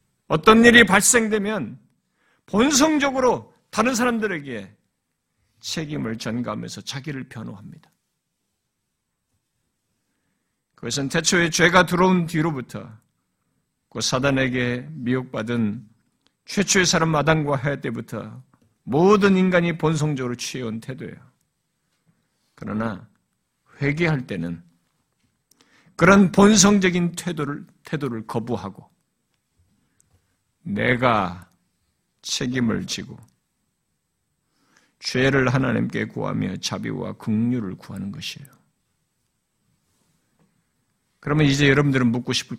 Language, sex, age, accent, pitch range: Korean, male, 50-69, native, 120-165 Hz